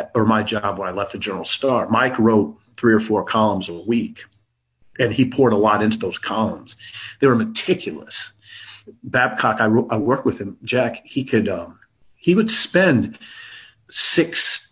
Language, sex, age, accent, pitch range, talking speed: English, male, 40-59, American, 105-135 Hz, 175 wpm